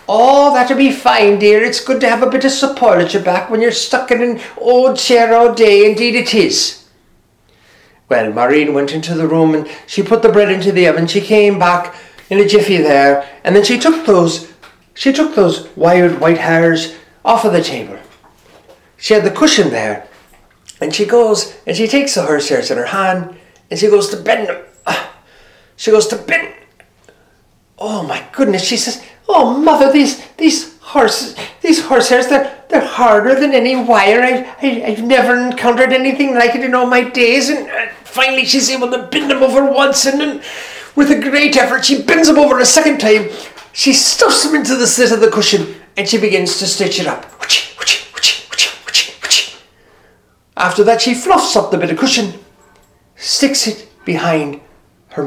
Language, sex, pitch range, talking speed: English, male, 200-265 Hz, 190 wpm